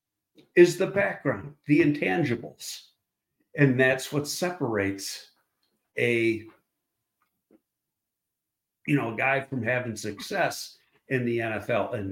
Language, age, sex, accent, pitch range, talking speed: English, 60-79, male, American, 125-195 Hz, 105 wpm